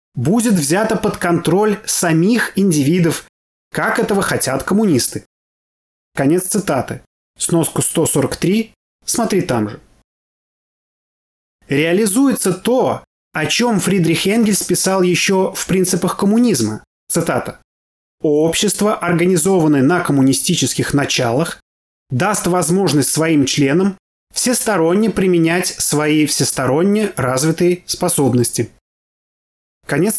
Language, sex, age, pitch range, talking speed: Russian, male, 20-39, 135-195 Hz, 90 wpm